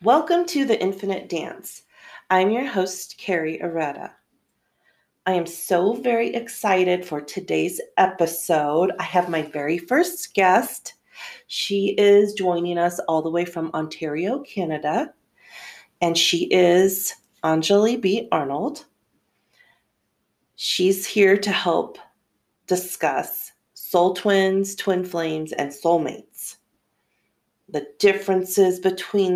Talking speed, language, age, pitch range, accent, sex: 110 wpm, English, 40-59, 165-195 Hz, American, female